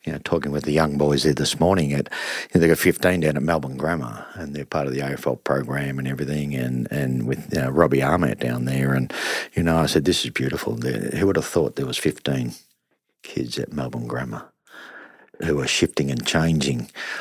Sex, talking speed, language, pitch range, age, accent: male, 215 wpm, English, 65-80 Hz, 50-69, Australian